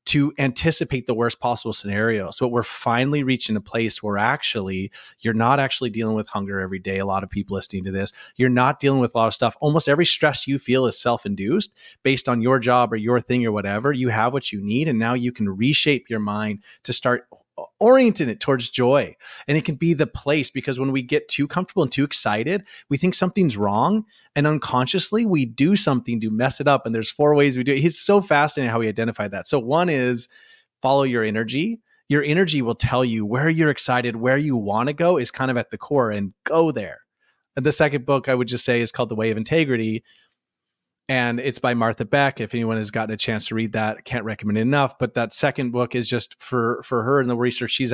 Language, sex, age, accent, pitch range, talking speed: English, male, 30-49, American, 115-140 Hz, 235 wpm